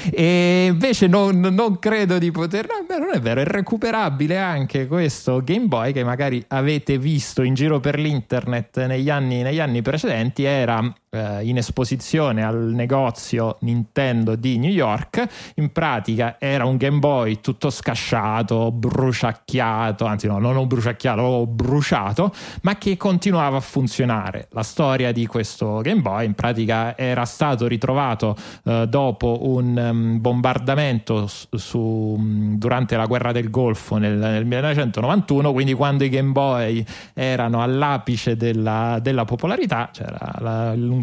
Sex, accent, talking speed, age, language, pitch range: male, native, 140 wpm, 30-49, Italian, 115-145 Hz